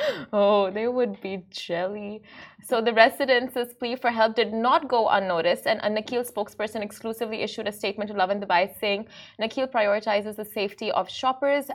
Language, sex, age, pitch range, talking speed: Arabic, female, 20-39, 195-225 Hz, 175 wpm